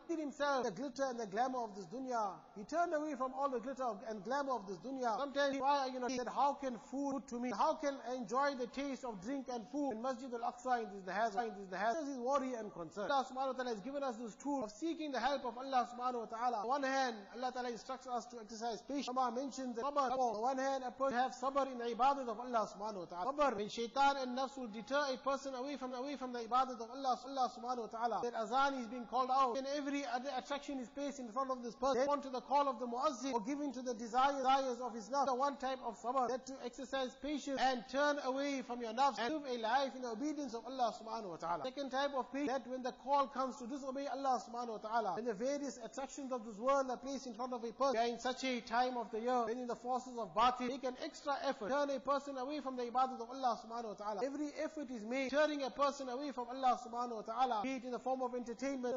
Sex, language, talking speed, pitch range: male, English, 255 wpm, 240-275 Hz